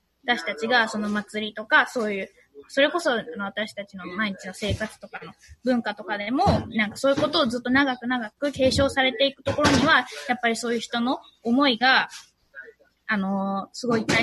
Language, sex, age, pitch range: Japanese, female, 20-39, 210-275 Hz